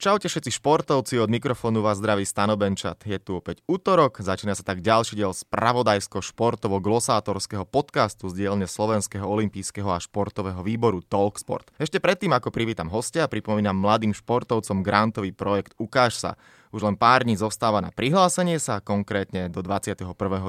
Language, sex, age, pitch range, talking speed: Slovak, male, 20-39, 100-125 Hz, 150 wpm